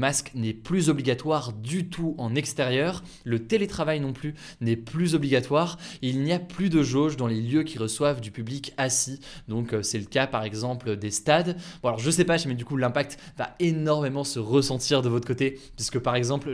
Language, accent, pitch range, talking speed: French, French, 120-145 Hz, 205 wpm